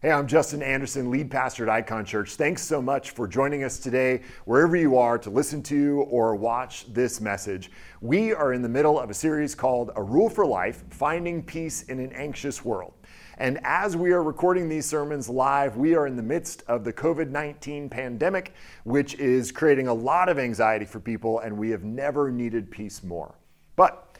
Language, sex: English, male